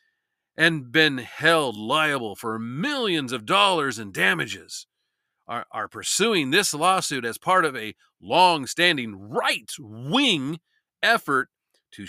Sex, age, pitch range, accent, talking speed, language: male, 40-59, 125-195 Hz, American, 120 wpm, English